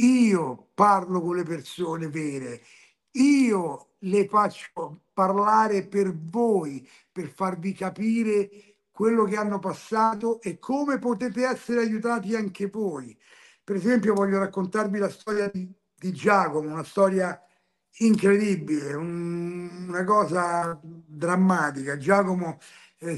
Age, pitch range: 50-69, 165-210 Hz